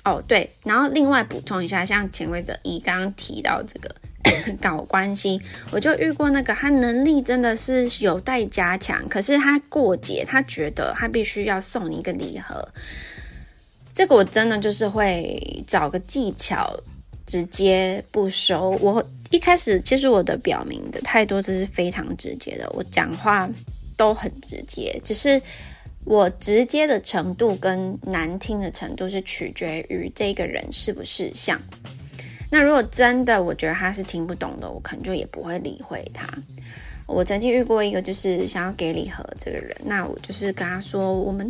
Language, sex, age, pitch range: Chinese, female, 20-39, 185-250 Hz